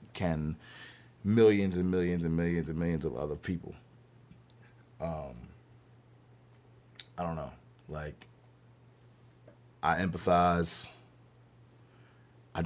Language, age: English, 30-49